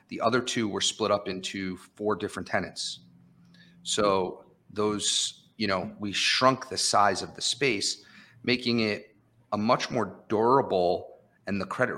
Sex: male